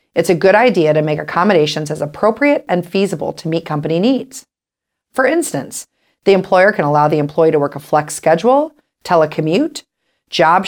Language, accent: English, American